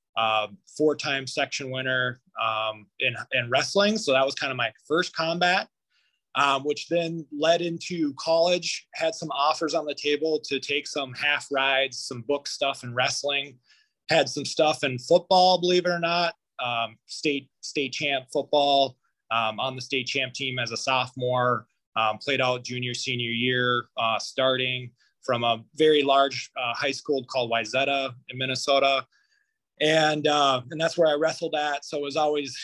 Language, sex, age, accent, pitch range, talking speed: English, male, 20-39, American, 130-165 Hz, 170 wpm